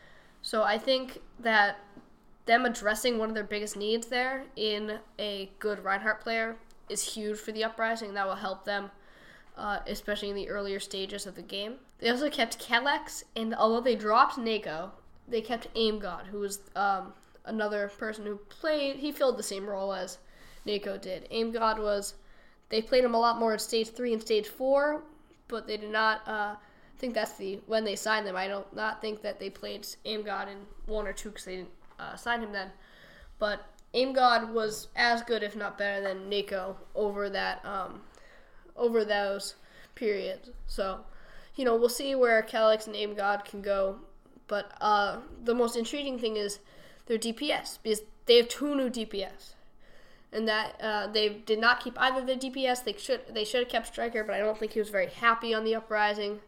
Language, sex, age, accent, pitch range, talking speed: English, female, 10-29, American, 205-235 Hz, 195 wpm